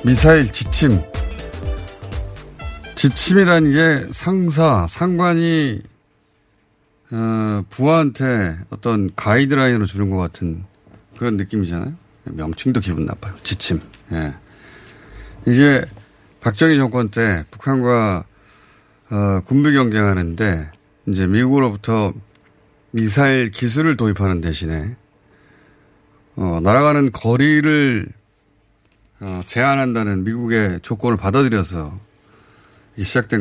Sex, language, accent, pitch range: male, Korean, native, 100-140 Hz